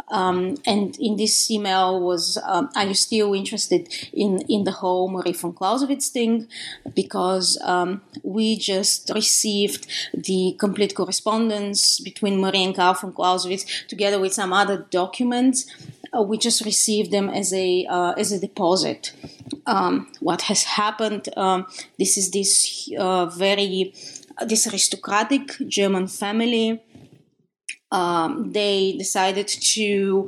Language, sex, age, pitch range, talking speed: English, female, 20-39, 185-220 Hz, 135 wpm